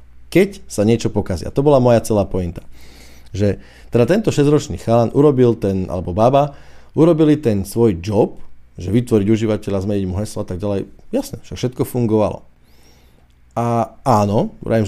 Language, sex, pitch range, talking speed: Slovak, male, 90-115 Hz, 145 wpm